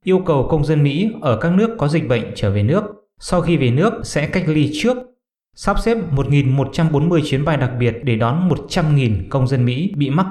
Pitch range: 120-165 Hz